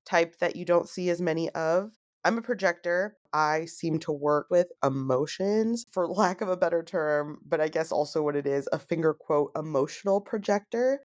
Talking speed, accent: 190 wpm, American